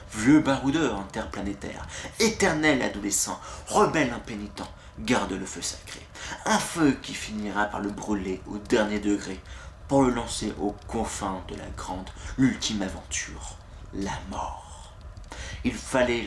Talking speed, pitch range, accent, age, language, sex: 130 wpm, 95-120 Hz, French, 30-49, French, male